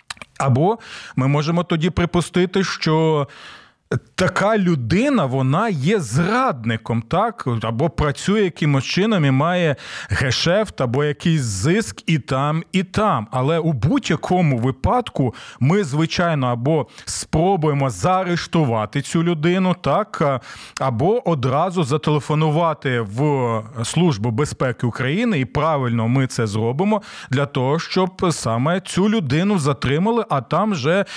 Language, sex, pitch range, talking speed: Ukrainian, male, 130-185 Hz, 115 wpm